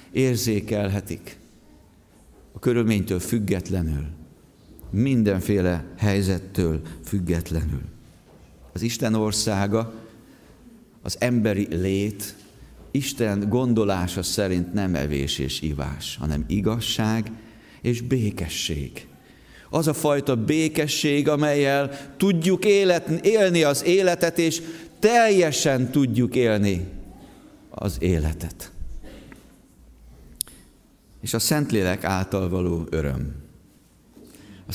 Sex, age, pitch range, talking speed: male, 50-69, 90-145 Hz, 80 wpm